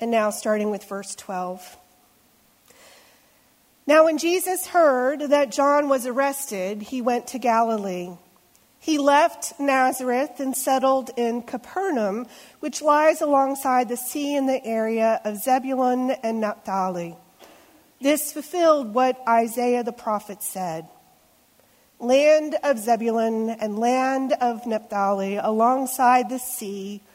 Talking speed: 120 wpm